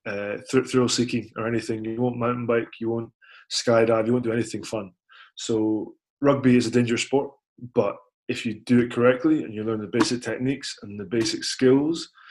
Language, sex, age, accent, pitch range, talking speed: English, male, 20-39, British, 115-130 Hz, 190 wpm